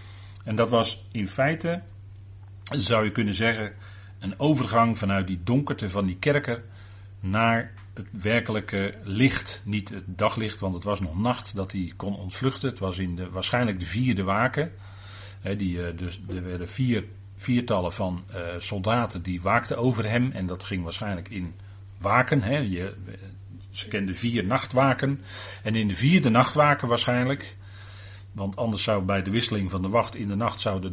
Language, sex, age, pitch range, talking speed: Dutch, male, 40-59, 100-120 Hz, 165 wpm